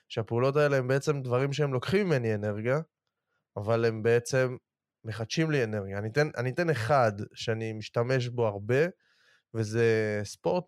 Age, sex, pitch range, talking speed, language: 20-39, male, 115-150 Hz, 145 wpm, Hebrew